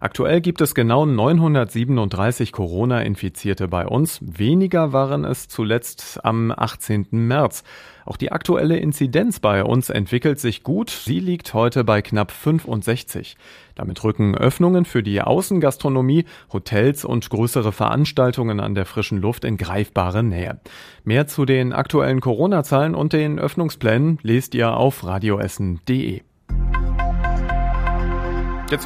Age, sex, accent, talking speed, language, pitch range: 40-59, male, German, 125 wpm, German, 105-145 Hz